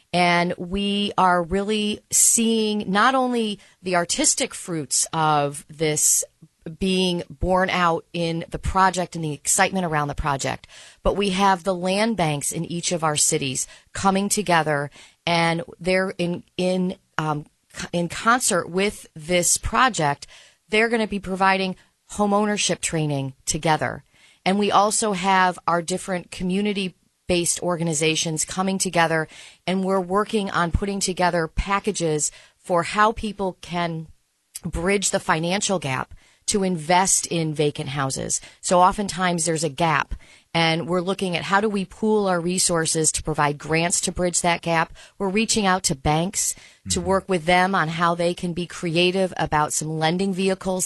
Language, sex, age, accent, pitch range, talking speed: English, female, 40-59, American, 165-195 Hz, 150 wpm